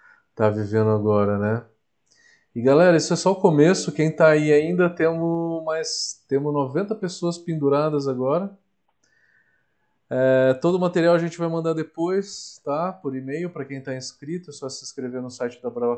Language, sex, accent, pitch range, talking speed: Portuguese, male, Brazilian, 120-150 Hz, 175 wpm